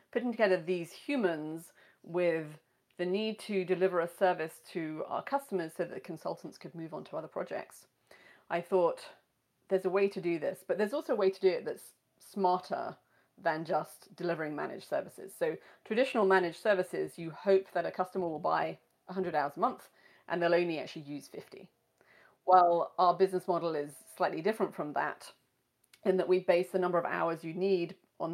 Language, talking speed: English, 185 wpm